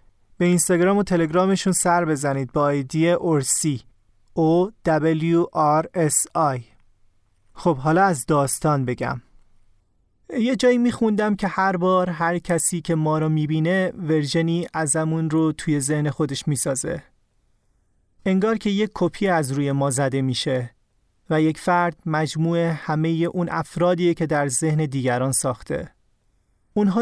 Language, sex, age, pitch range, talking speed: Persian, male, 30-49, 140-175 Hz, 120 wpm